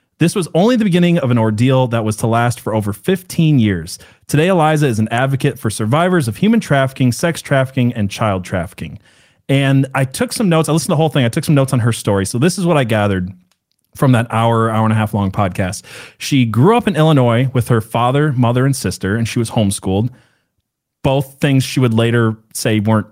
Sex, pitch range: male, 115-160 Hz